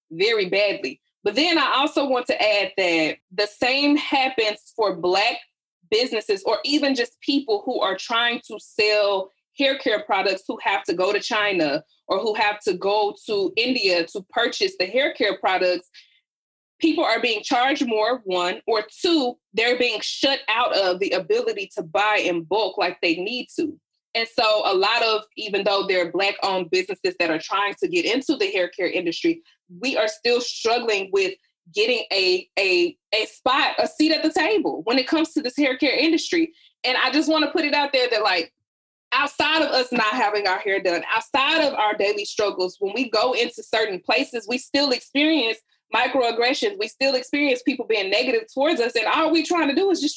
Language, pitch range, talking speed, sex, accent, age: English, 210-325 Hz, 195 wpm, female, American, 20-39